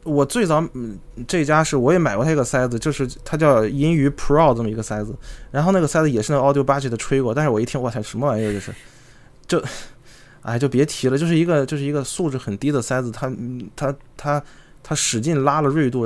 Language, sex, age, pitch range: Chinese, male, 20-39, 115-145 Hz